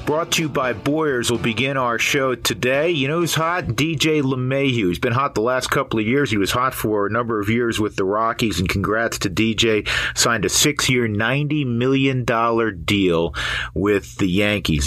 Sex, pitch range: male, 100-130 Hz